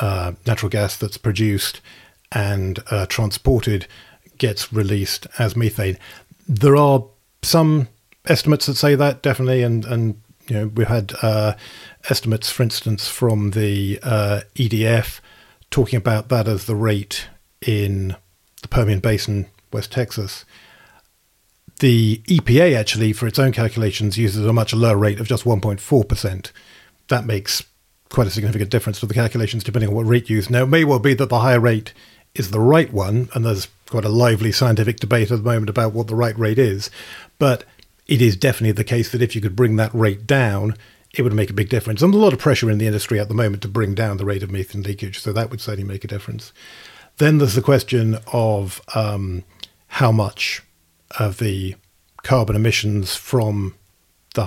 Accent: British